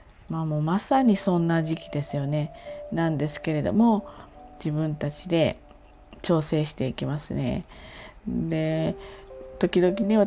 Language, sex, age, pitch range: Japanese, female, 40-59, 135-185 Hz